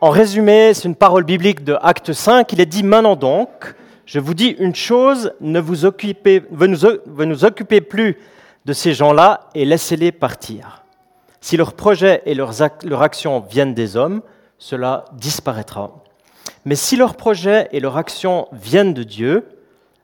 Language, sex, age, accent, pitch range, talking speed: French, male, 40-59, French, 145-205 Hz, 155 wpm